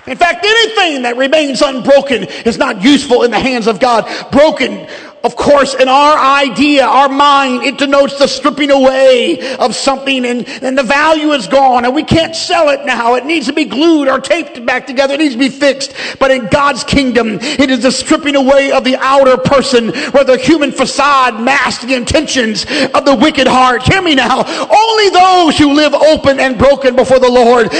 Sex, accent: male, American